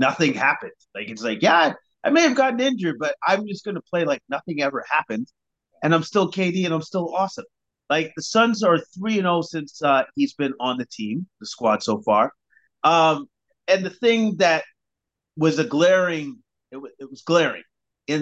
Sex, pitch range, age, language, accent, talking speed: male, 125-180 Hz, 30-49, English, American, 190 wpm